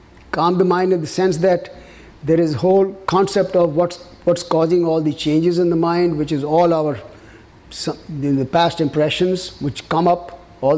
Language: English